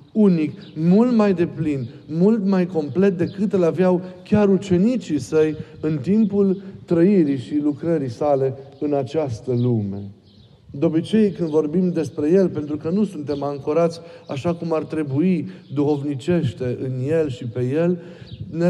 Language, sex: Romanian, male